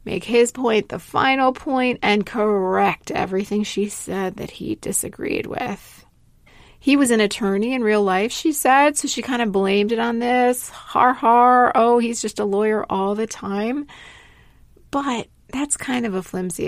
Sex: female